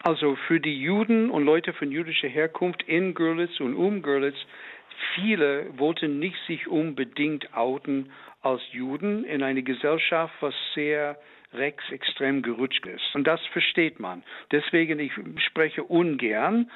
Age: 60-79